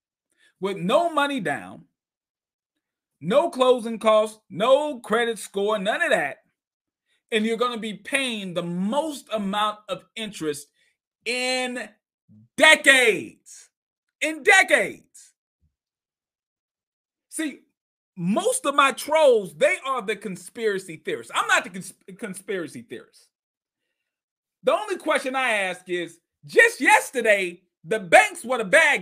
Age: 40-59